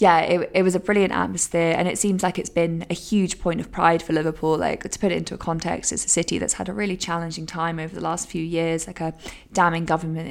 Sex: female